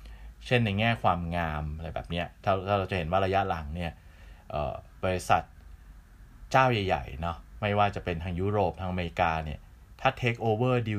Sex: male